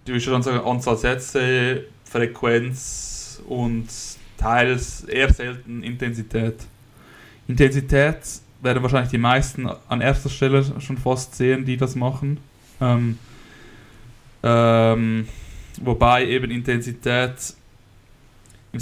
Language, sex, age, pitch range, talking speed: German, male, 20-39, 120-130 Hz, 100 wpm